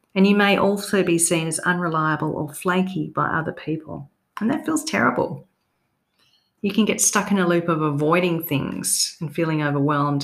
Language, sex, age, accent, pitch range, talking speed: English, female, 40-59, Australian, 150-190 Hz, 175 wpm